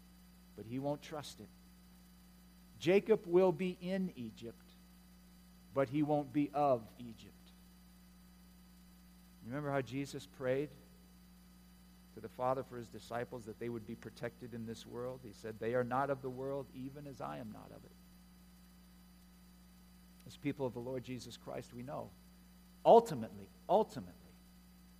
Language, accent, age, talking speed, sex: English, American, 50-69, 145 wpm, male